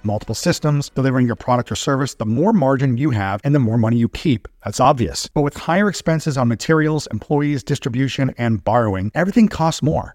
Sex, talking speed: male, 195 wpm